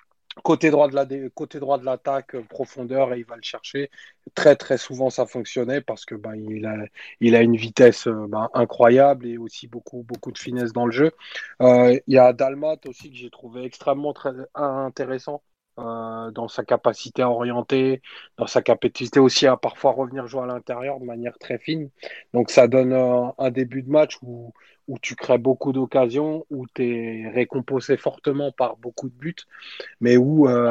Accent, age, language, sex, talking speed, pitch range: French, 20-39, French, male, 190 wpm, 120-135 Hz